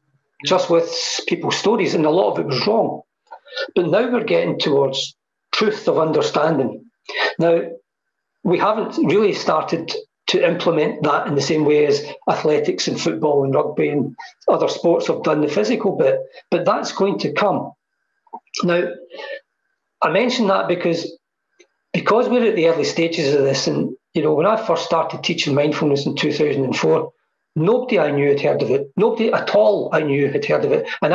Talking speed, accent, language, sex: 175 wpm, British, English, male